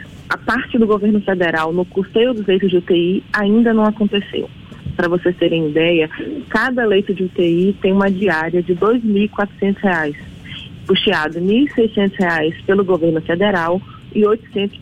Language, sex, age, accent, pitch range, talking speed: Portuguese, female, 30-49, Brazilian, 175-210 Hz, 155 wpm